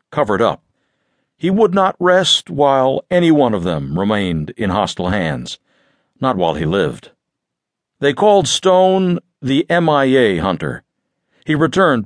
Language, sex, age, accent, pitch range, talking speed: English, male, 60-79, American, 120-165 Hz, 135 wpm